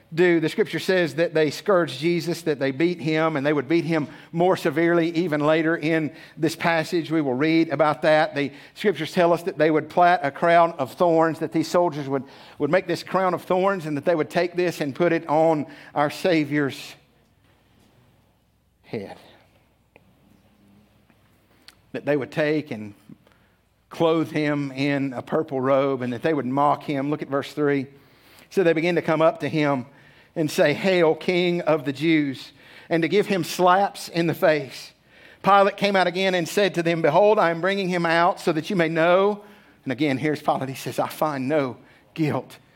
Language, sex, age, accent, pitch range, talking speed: English, male, 50-69, American, 135-170 Hz, 190 wpm